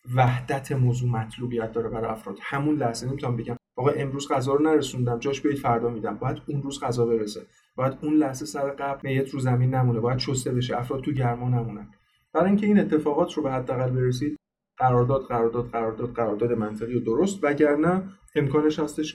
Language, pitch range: Persian, 120-150 Hz